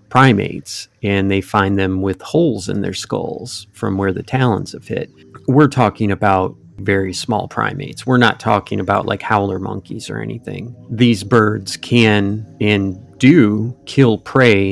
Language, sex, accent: English, male, American